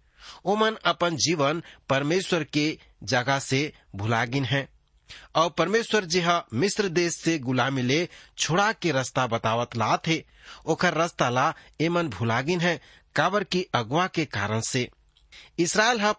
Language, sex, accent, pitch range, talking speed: English, male, Indian, 130-180 Hz, 130 wpm